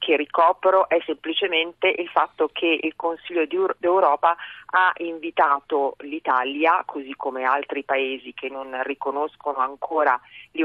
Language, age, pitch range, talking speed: Italian, 40-59, 145-190 Hz, 125 wpm